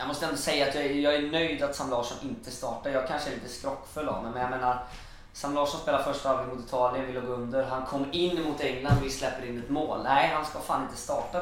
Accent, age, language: Swedish, 20-39, English